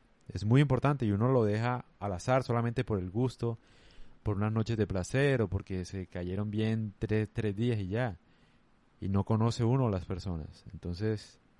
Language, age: Spanish, 30-49